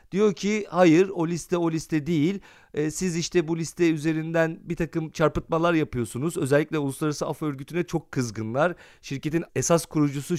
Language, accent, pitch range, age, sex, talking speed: Turkish, native, 145-195 Hz, 40-59, male, 155 wpm